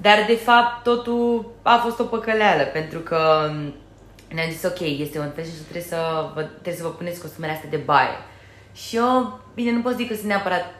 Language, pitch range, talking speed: Romanian, 150-195 Hz, 195 wpm